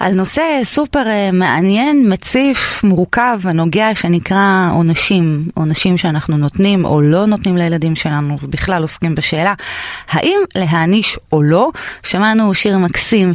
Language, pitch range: Hebrew, 165-205 Hz